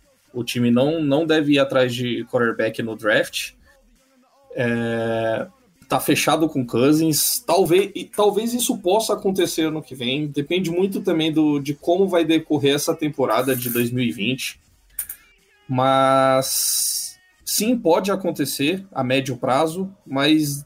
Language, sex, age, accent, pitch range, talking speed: Portuguese, male, 20-39, Brazilian, 130-185 Hz, 135 wpm